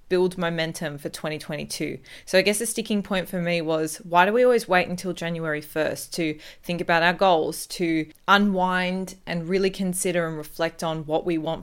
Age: 20-39